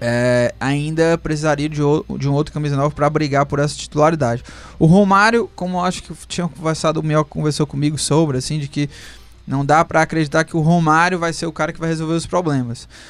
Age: 20-39